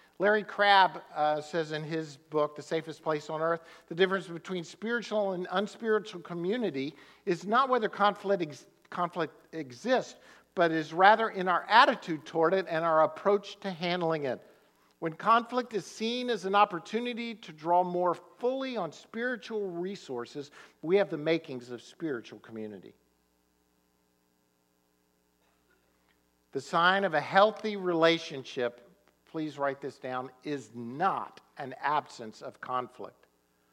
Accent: American